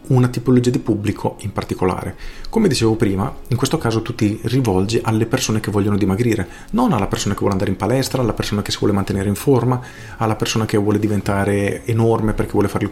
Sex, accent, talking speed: male, native, 215 wpm